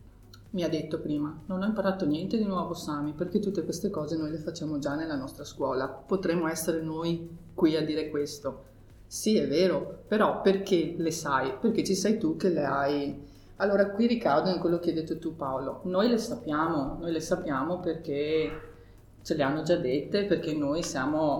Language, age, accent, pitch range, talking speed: Italian, 30-49, native, 155-185 Hz, 190 wpm